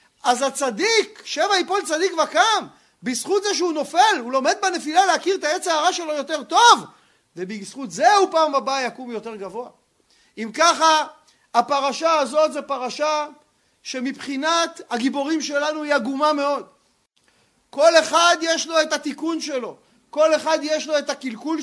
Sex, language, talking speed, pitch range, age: male, Hebrew, 145 wpm, 285-345 Hz, 40-59